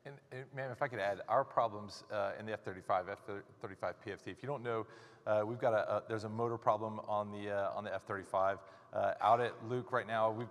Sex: male